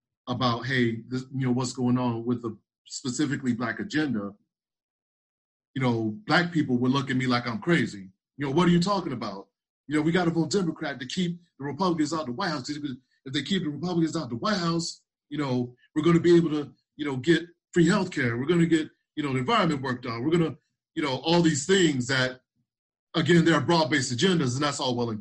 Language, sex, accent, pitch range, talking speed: English, male, American, 125-160 Hz, 235 wpm